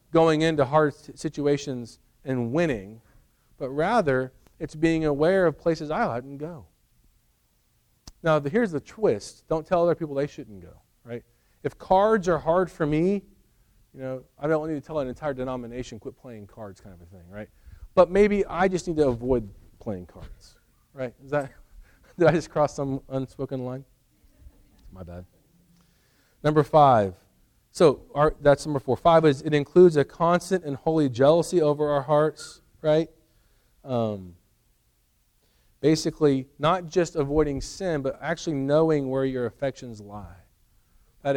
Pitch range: 115-155 Hz